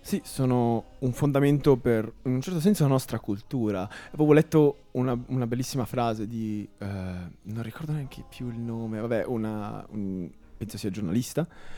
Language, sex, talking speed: Italian, male, 165 wpm